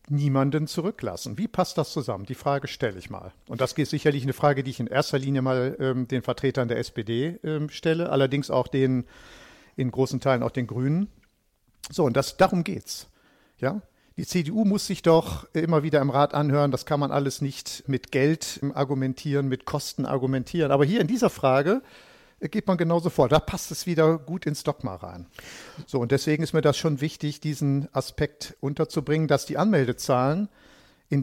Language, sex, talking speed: German, male, 190 wpm